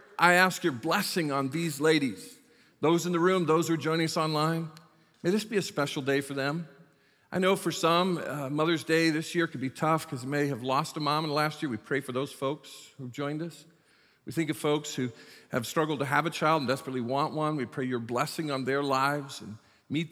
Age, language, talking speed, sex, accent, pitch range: 50-69, English, 240 wpm, male, American, 130-160 Hz